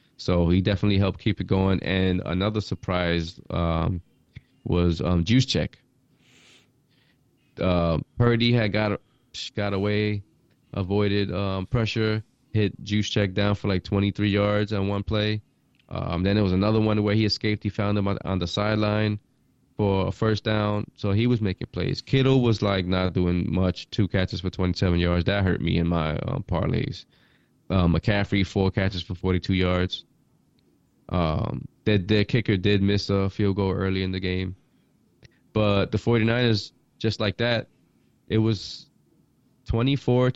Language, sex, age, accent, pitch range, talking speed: English, male, 20-39, American, 90-105 Hz, 160 wpm